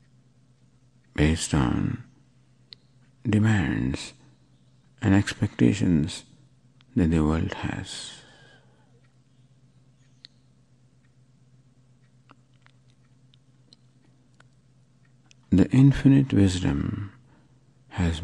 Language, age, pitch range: English, 60-79, 120-130 Hz